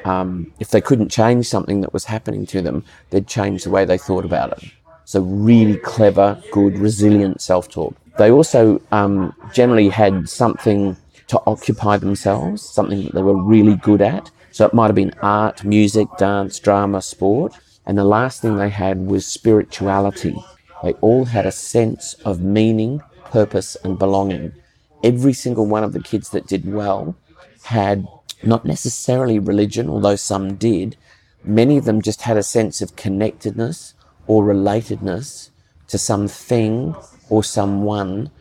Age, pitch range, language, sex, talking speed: 40-59, 100-110 Hz, English, male, 160 wpm